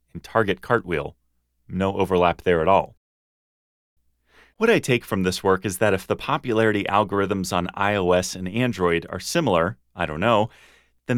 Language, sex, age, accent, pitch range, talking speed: English, male, 30-49, American, 90-115 Hz, 160 wpm